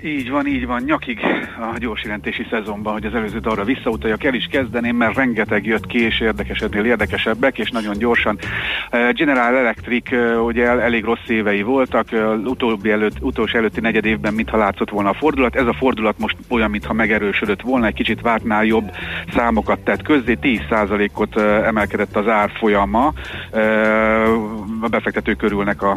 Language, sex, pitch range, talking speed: Hungarian, male, 105-115 Hz, 155 wpm